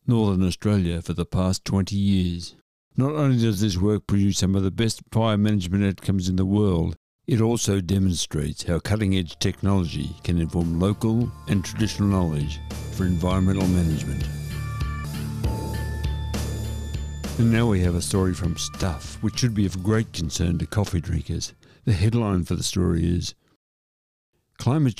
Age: 60-79